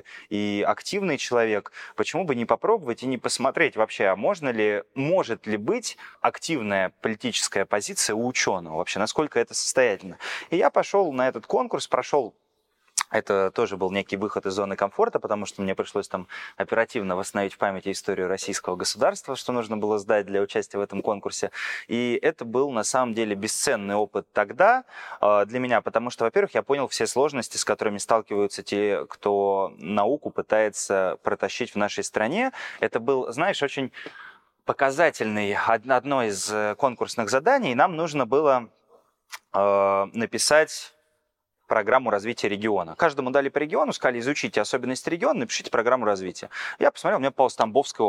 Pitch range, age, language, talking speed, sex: 100-150 Hz, 20-39, Russian, 155 wpm, male